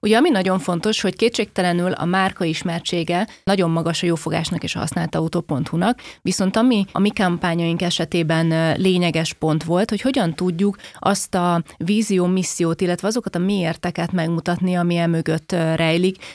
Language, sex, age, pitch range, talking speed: Hungarian, female, 30-49, 165-195 Hz, 145 wpm